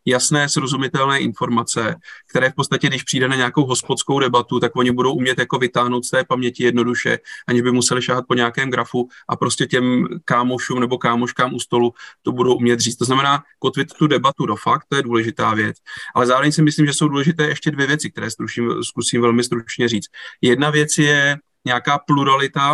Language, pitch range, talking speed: Slovak, 120-150 Hz, 195 wpm